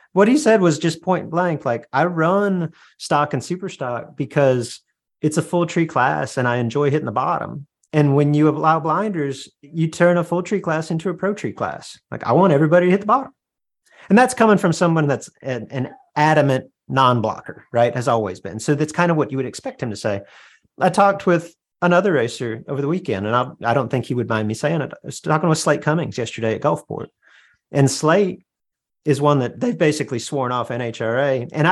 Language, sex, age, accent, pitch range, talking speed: English, male, 40-59, American, 125-165 Hz, 215 wpm